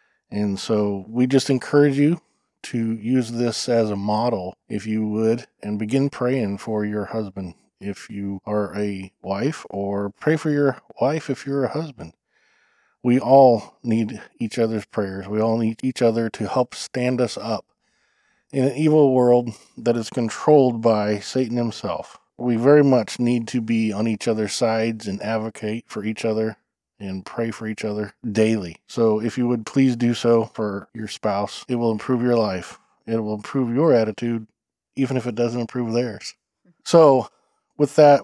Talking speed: 175 wpm